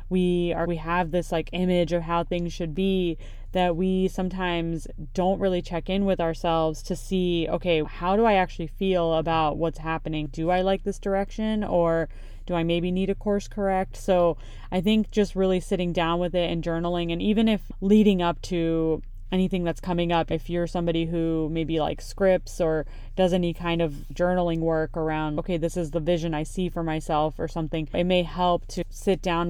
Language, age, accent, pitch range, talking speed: English, 20-39, American, 160-185 Hz, 200 wpm